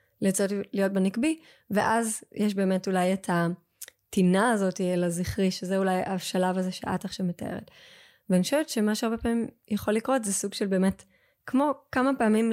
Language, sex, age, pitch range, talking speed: Hebrew, female, 20-39, 185-225 Hz, 160 wpm